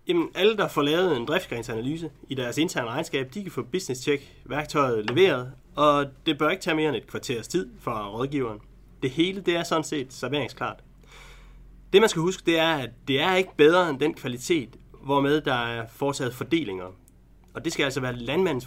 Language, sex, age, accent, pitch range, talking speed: Danish, male, 30-49, native, 125-165 Hz, 195 wpm